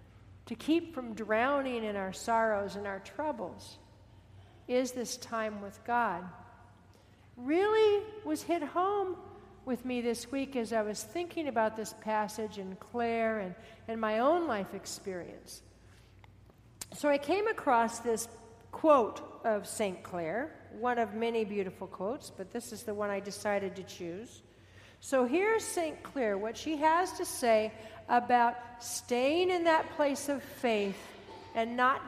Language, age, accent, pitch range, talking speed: English, 60-79, American, 200-275 Hz, 150 wpm